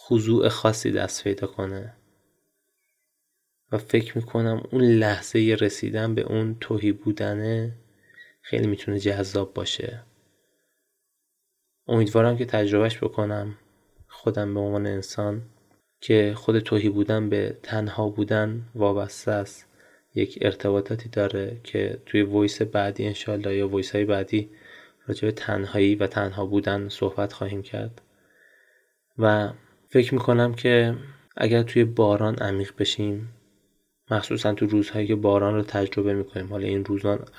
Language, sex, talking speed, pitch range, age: Persian, male, 120 wpm, 100-110 Hz, 20-39